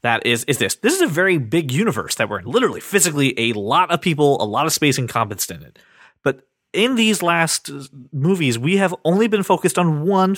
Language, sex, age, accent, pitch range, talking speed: English, male, 30-49, American, 130-165 Hz, 220 wpm